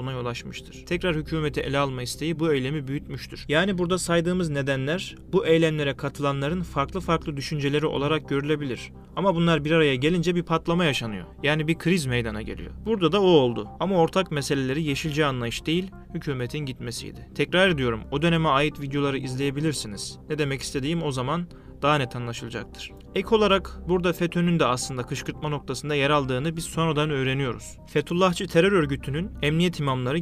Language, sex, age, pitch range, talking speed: Turkish, male, 30-49, 135-165 Hz, 155 wpm